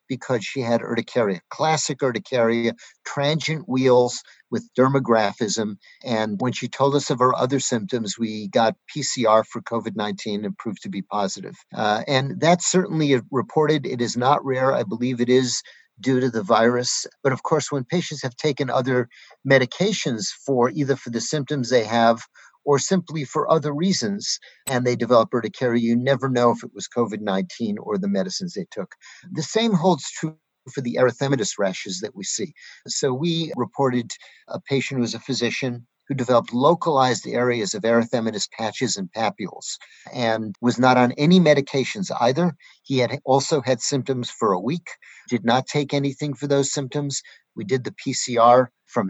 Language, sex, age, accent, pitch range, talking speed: English, male, 50-69, American, 120-150 Hz, 170 wpm